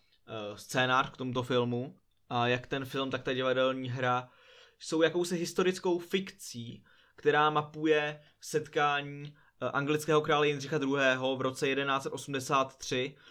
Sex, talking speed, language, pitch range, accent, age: male, 115 wpm, Czech, 125-150 Hz, native, 20-39